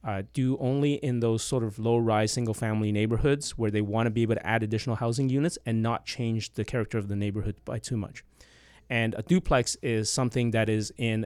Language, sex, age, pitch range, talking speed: English, male, 30-49, 105-125 Hz, 215 wpm